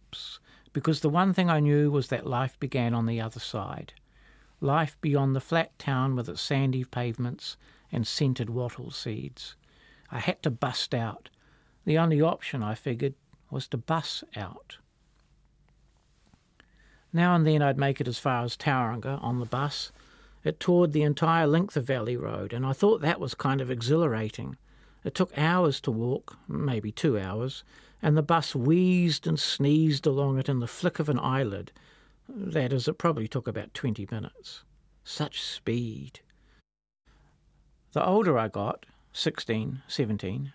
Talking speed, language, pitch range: 160 wpm, English, 120-155 Hz